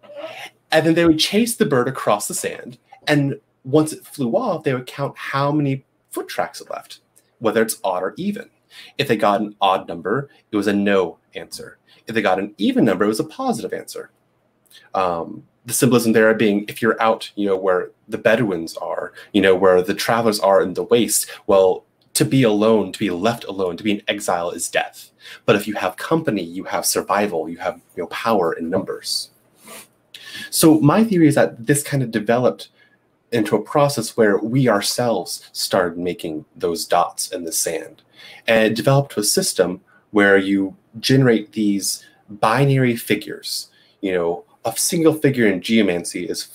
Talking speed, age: 185 wpm, 30-49